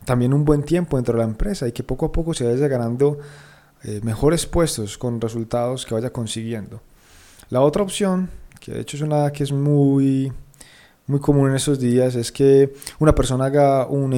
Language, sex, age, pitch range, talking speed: Spanish, male, 20-39, 120-150 Hz, 190 wpm